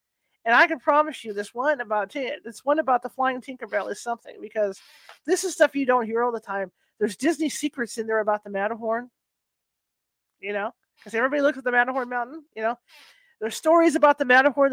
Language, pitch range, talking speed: English, 220-290 Hz, 205 wpm